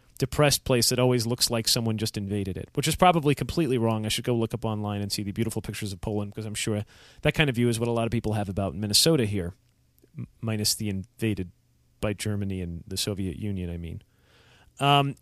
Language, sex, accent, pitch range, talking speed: English, male, American, 110-145 Hz, 225 wpm